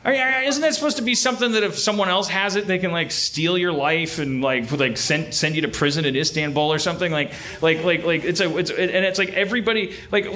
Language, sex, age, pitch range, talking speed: English, male, 30-49, 140-205 Hz, 255 wpm